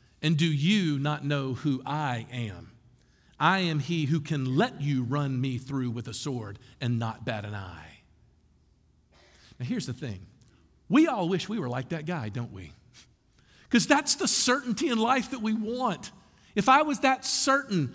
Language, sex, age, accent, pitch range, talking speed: English, male, 50-69, American, 120-190 Hz, 180 wpm